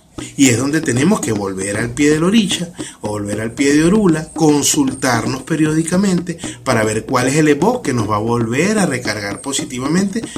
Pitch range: 120-170 Hz